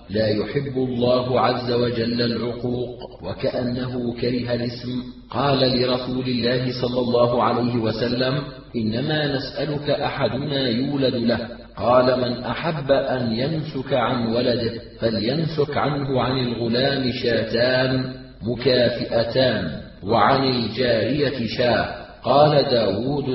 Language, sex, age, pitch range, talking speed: Arabic, male, 40-59, 115-130 Hz, 100 wpm